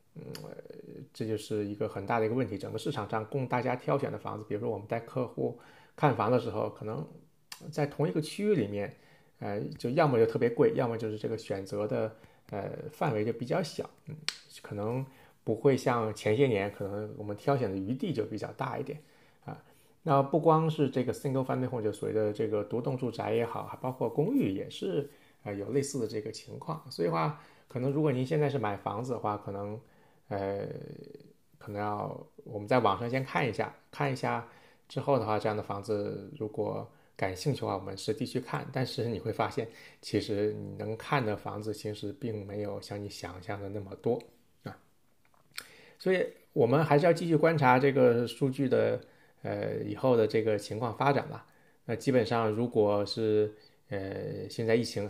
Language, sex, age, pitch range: Chinese, male, 20-39, 105-140 Hz